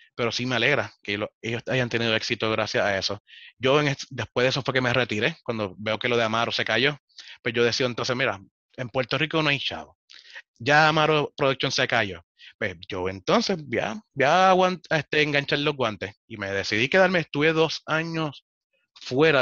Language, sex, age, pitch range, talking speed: Spanish, male, 30-49, 115-145 Hz, 200 wpm